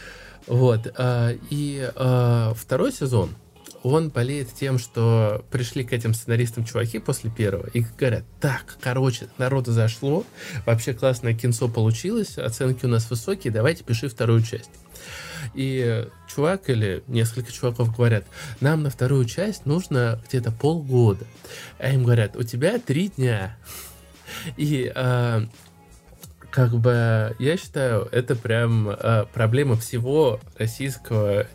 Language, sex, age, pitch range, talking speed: Russian, male, 20-39, 115-130 Hz, 125 wpm